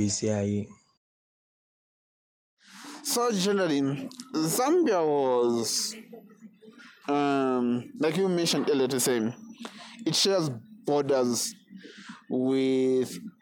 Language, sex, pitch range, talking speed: English, male, 145-205 Hz, 65 wpm